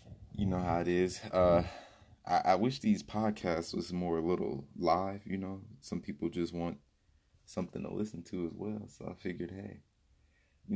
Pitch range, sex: 80-95 Hz, male